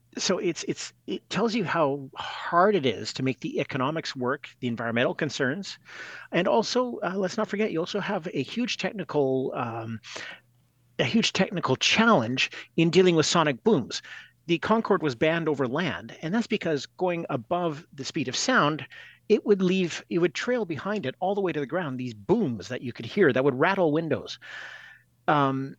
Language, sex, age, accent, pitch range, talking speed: English, male, 40-59, American, 130-190 Hz, 185 wpm